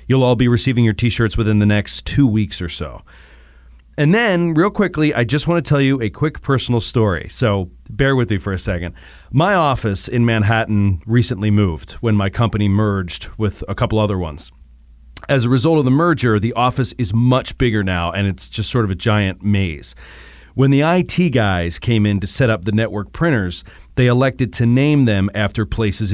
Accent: American